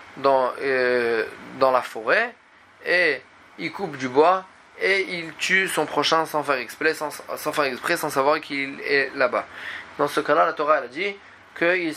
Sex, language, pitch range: male, French, 140-180 Hz